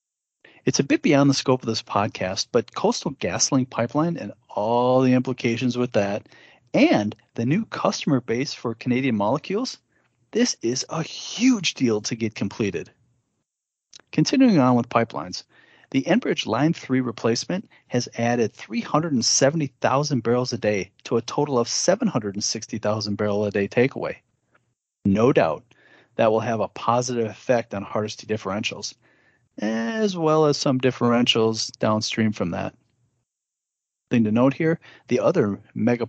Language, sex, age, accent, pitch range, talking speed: English, male, 40-59, American, 115-140 Hz, 140 wpm